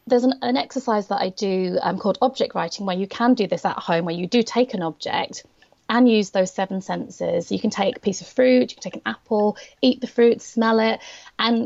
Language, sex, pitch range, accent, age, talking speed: English, female, 195-245 Hz, British, 30-49, 240 wpm